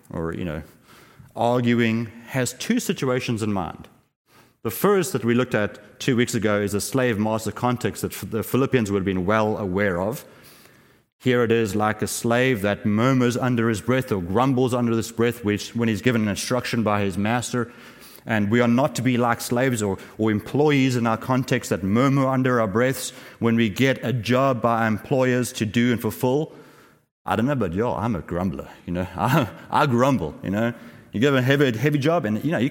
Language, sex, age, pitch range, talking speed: English, male, 30-49, 105-135 Hz, 200 wpm